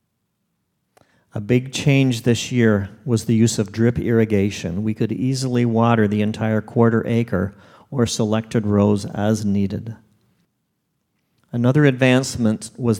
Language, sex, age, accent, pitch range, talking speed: English, male, 50-69, American, 105-125 Hz, 125 wpm